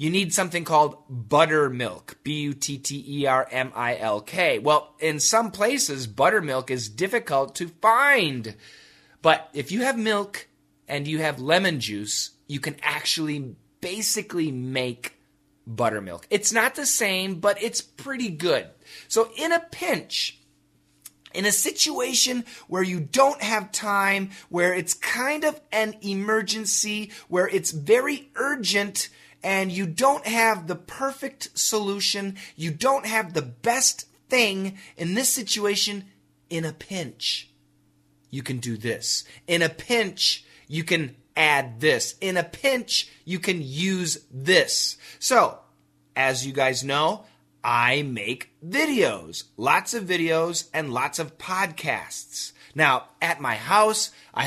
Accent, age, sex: American, 30-49, male